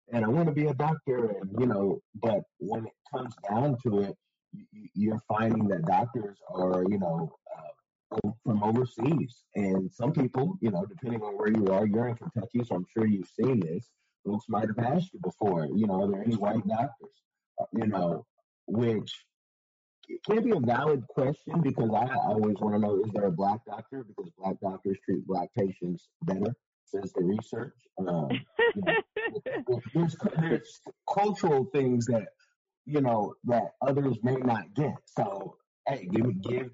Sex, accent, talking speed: male, American, 175 wpm